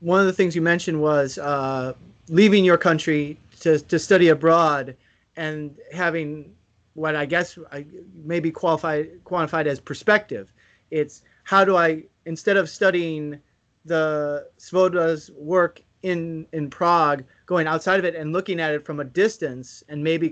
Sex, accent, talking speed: male, American, 155 wpm